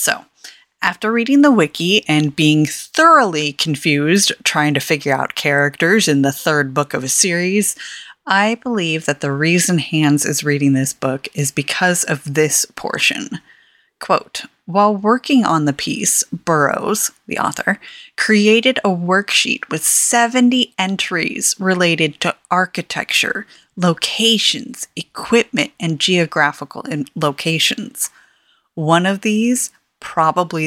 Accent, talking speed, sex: American, 125 wpm, female